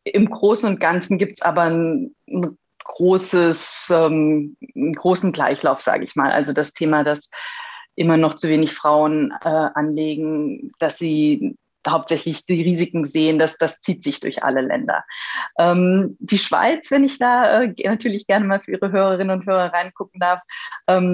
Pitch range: 165-205 Hz